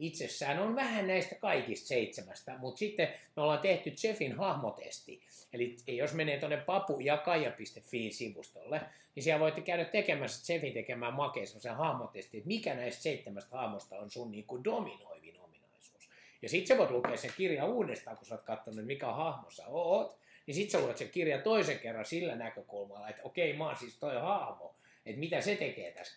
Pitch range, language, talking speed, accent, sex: 120-180 Hz, Finnish, 170 wpm, native, male